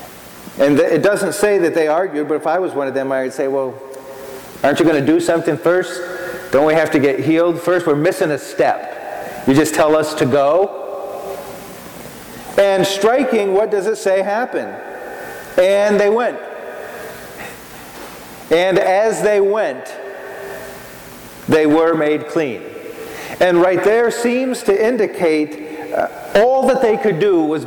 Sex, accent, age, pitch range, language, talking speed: male, American, 40-59, 155-200 Hz, English, 155 wpm